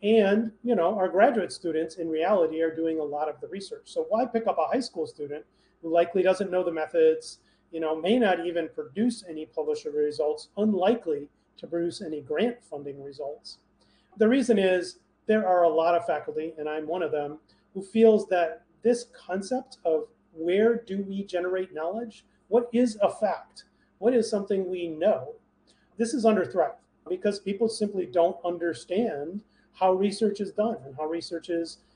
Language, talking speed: English, 180 wpm